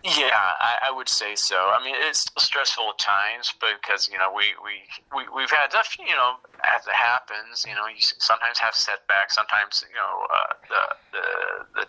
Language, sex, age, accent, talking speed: English, male, 30-49, American, 210 wpm